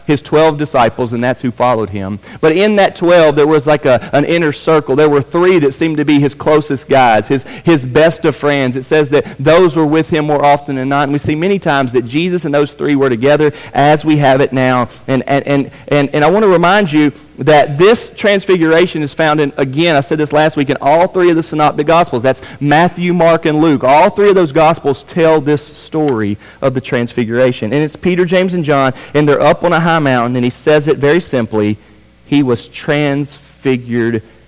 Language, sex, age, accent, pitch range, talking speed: English, male, 40-59, American, 125-165 Hz, 225 wpm